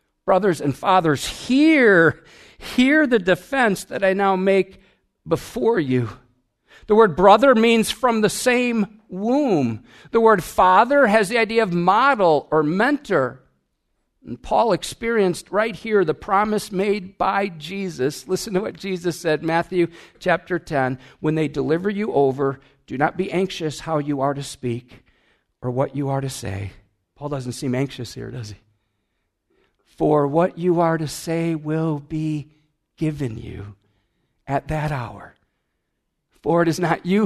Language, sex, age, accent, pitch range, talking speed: English, male, 50-69, American, 145-210 Hz, 150 wpm